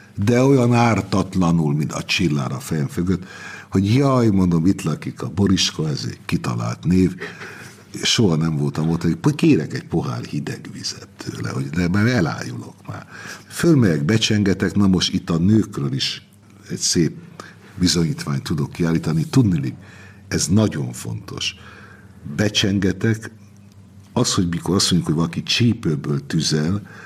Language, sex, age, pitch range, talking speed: Hungarian, male, 60-79, 90-120 Hz, 135 wpm